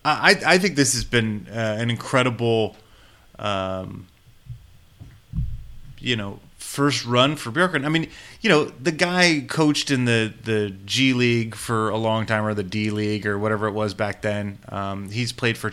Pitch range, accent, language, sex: 105-130 Hz, American, English, male